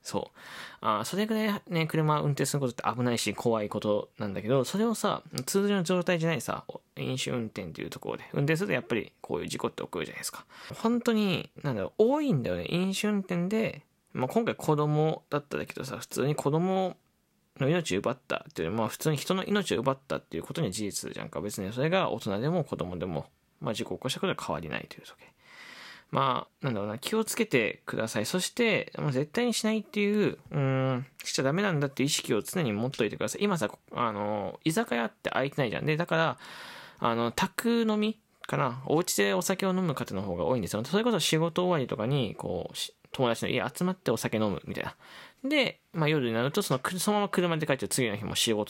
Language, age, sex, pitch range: Japanese, 20-39, male, 125-205 Hz